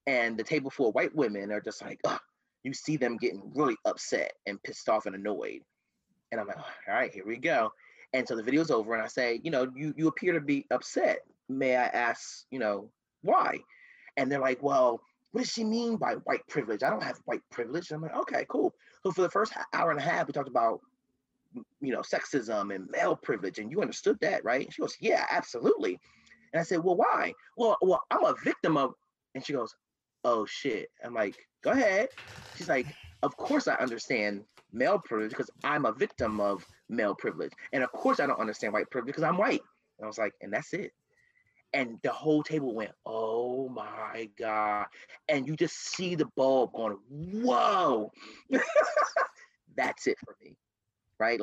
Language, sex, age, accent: English, male, 30-49, American